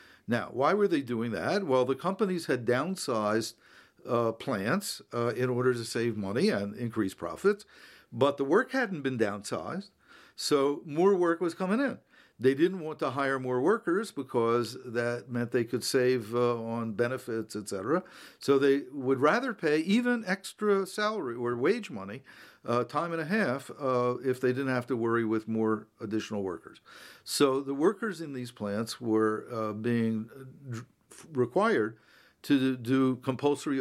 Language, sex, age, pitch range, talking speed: English, male, 50-69, 115-150 Hz, 160 wpm